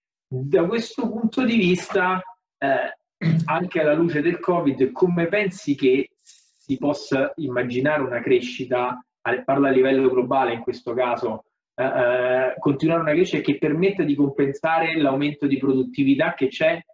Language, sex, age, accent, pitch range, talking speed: Italian, male, 30-49, native, 125-150 Hz, 140 wpm